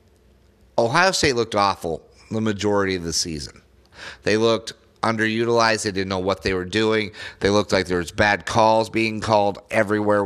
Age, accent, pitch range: 30-49, American, 95-115 Hz